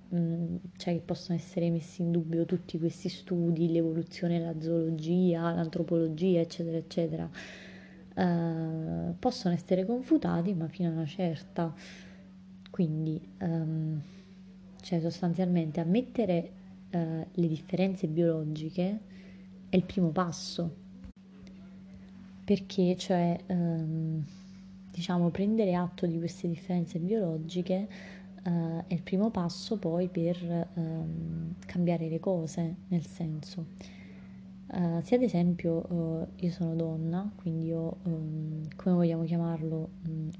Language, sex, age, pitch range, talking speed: Italian, female, 20-39, 165-185 Hz, 115 wpm